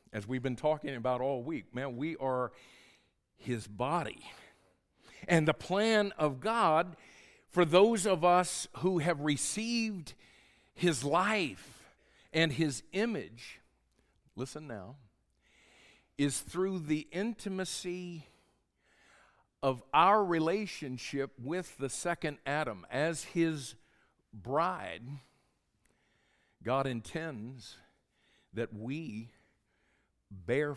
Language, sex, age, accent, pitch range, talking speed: English, male, 50-69, American, 120-170 Hz, 100 wpm